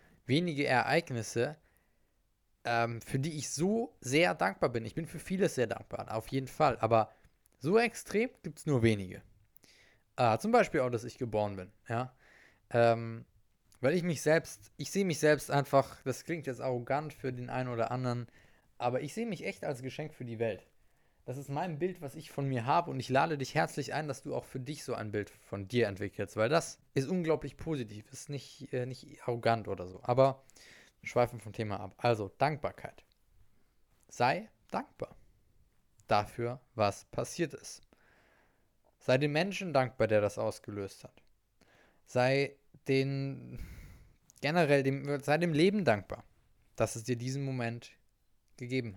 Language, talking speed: German, 170 wpm